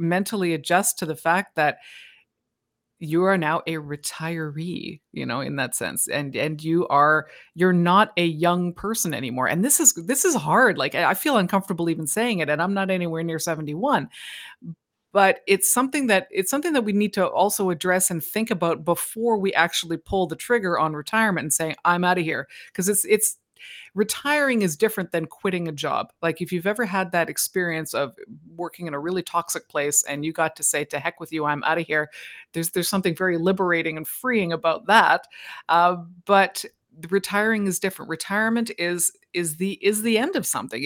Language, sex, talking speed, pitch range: English, female, 200 wpm, 165-195 Hz